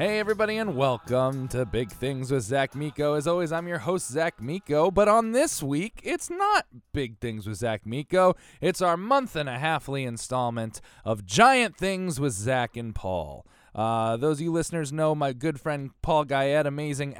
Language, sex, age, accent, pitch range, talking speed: English, male, 20-39, American, 115-170 Hz, 190 wpm